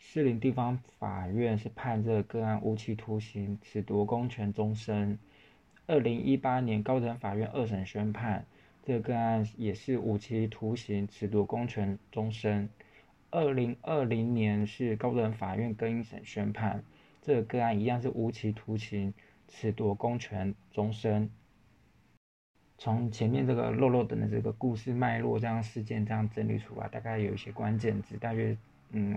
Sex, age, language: male, 20-39, Chinese